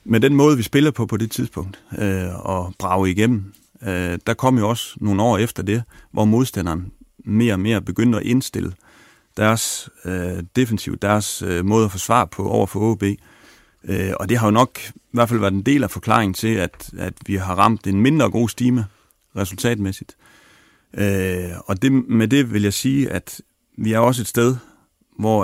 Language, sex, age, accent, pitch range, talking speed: Danish, male, 40-59, native, 95-115 Hz, 195 wpm